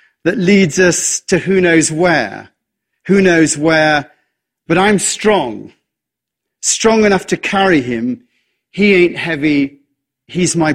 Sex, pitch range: male, 150-195 Hz